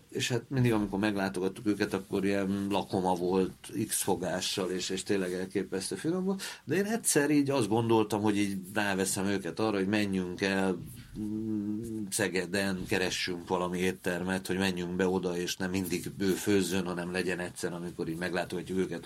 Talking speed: 160 wpm